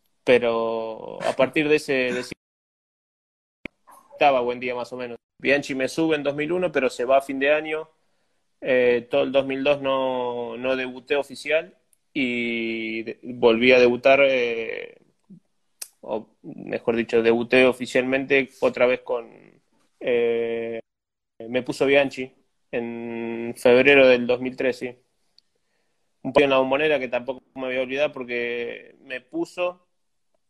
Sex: male